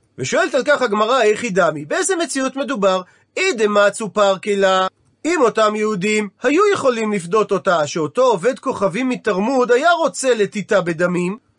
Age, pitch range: 40-59, 195-255 Hz